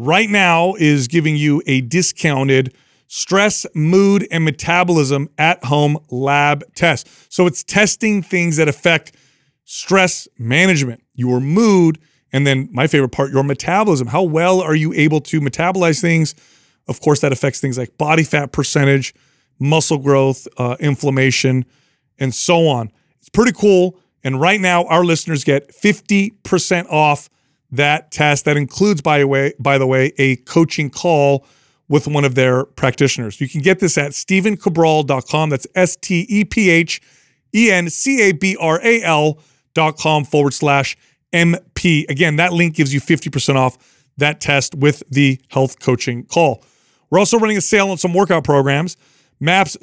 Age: 30-49